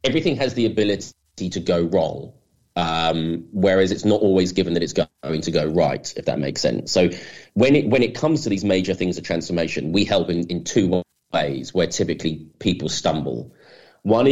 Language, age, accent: English, 30-49, British